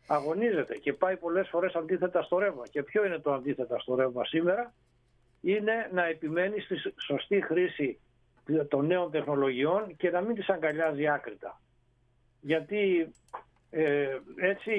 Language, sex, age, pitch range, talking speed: Greek, male, 60-79, 140-195 Hz, 140 wpm